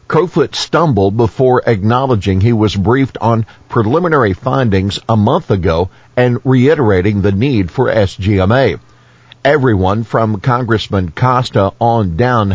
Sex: male